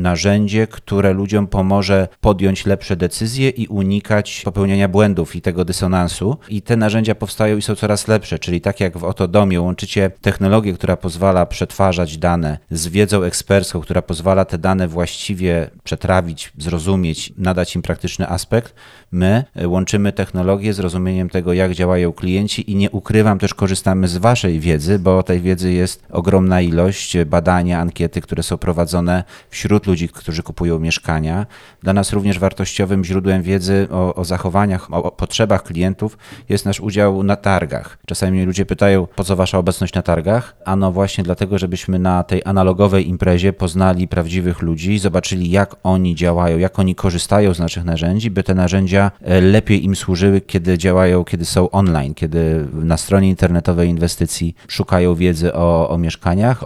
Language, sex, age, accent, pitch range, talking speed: Polish, male, 30-49, native, 90-100 Hz, 160 wpm